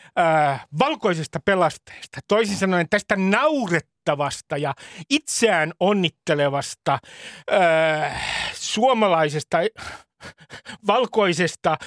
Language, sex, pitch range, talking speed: Finnish, male, 165-225 Hz, 70 wpm